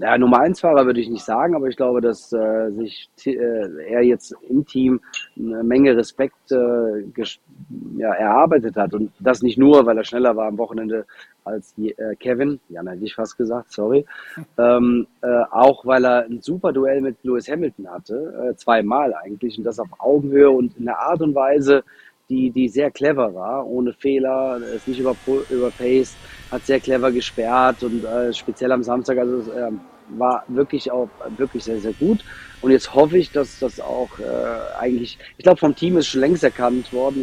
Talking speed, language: 190 wpm, German